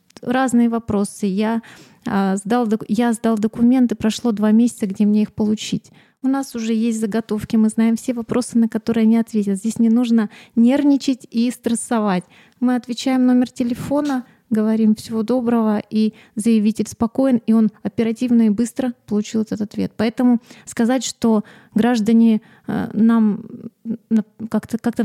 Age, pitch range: 30-49, 210-235 Hz